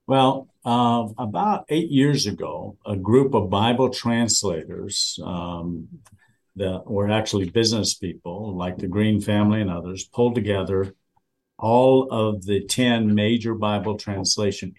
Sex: male